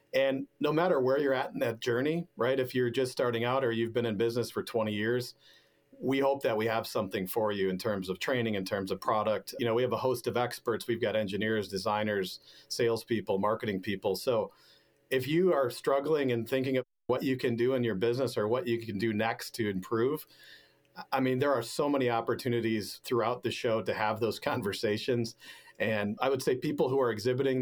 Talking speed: 215 wpm